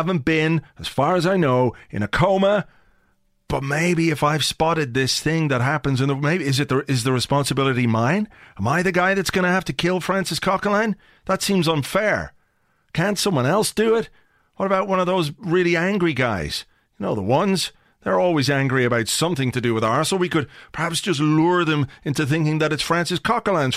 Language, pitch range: English, 125-170 Hz